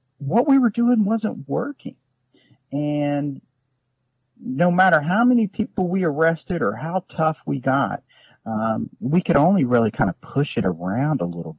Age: 50-69